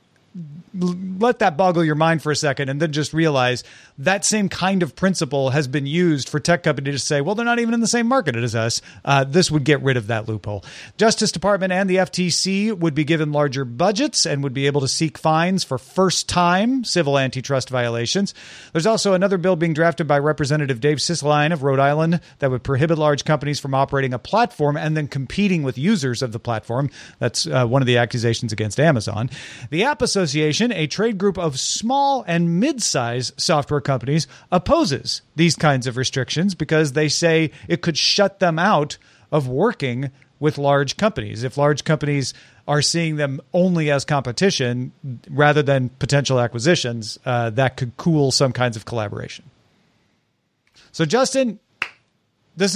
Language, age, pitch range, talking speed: English, 40-59, 135-180 Hz, 180 wpm